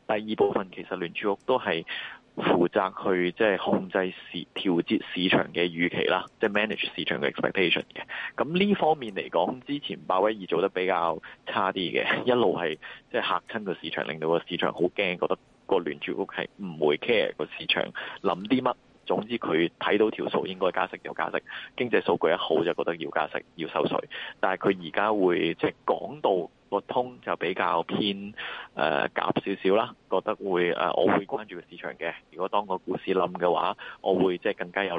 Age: 20-39